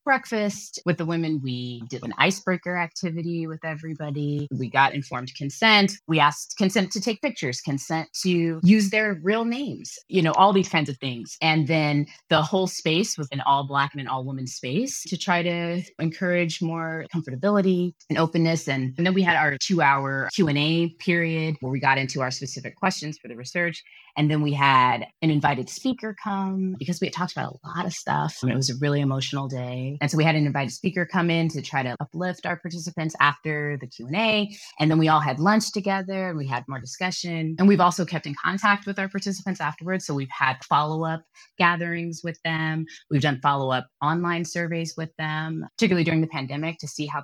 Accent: American